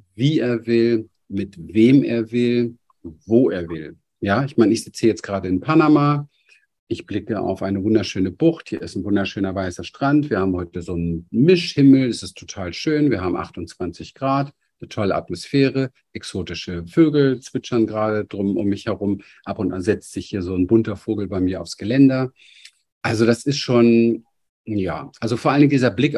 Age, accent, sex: 50-69, German, male